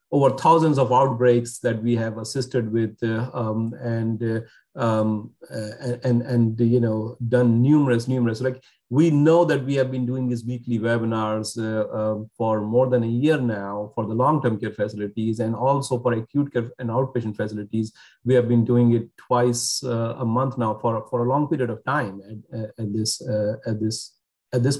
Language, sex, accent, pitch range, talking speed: English, male, Indian, 115-145 Hz, 195 wpm